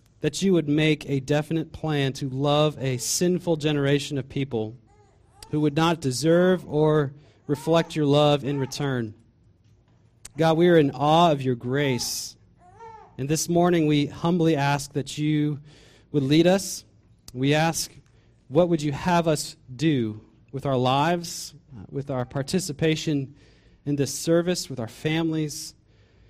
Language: English